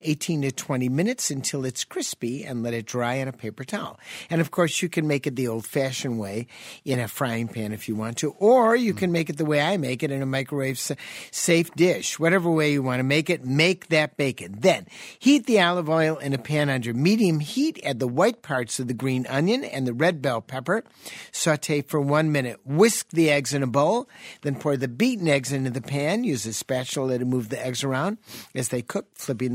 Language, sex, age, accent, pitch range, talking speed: English, male, 50-69, American, 130-180 Hz, 225 wpm